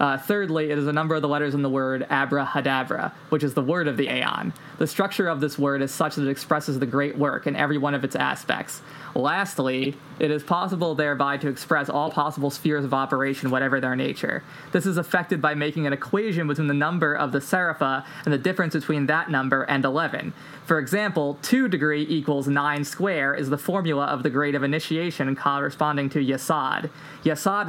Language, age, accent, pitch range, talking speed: English, 20-39, American, 140-160 Hz, 205 wpm